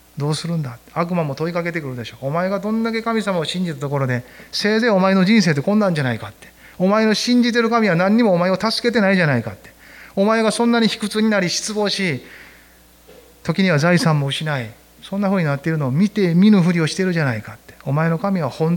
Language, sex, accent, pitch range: Japanese, male, native, 120-195 Hz